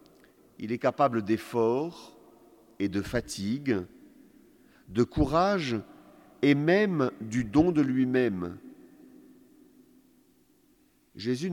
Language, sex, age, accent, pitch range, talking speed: French, male, 50-69, French, 120-175 Hz, 85 wpm